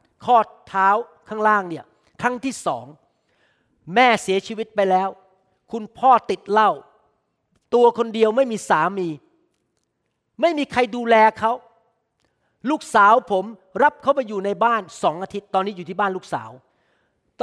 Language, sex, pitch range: Thai, male, 195-270 Hz